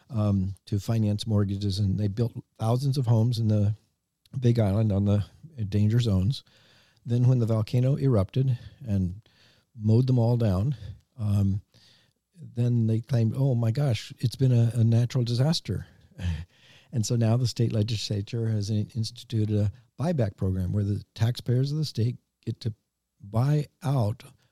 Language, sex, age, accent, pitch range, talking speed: English, male, 50-69, American, 105-130 Hz, 150 wpm